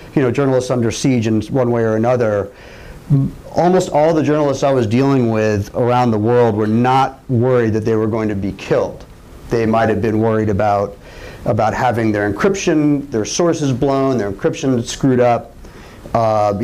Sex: male